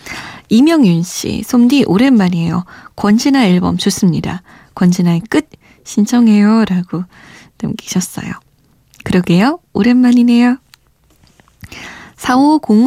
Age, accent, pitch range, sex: 20-39, native, 185-245 Hz, female